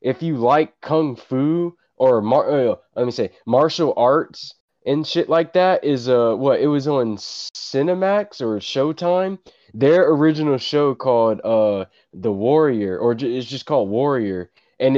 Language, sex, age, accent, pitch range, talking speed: English, male, 20-39, American, 110-150 Hz, 160 wpm